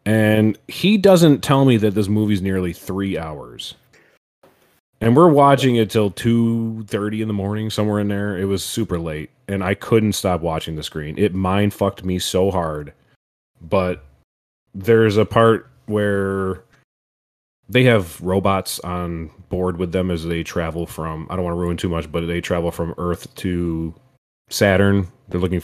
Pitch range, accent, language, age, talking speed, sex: 85-105 Hz, American, English, 30-49, 165 wpm, male